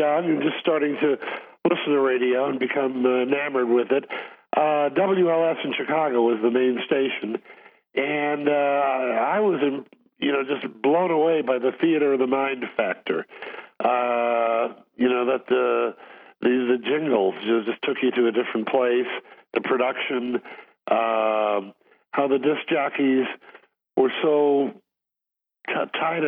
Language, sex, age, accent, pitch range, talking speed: English, male, 50-69, American, 120-150 Hz, 145 wpm